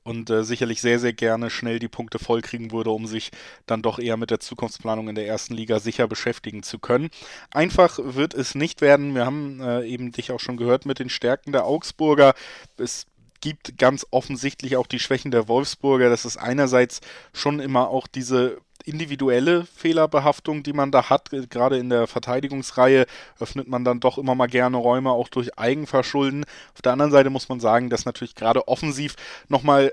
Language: German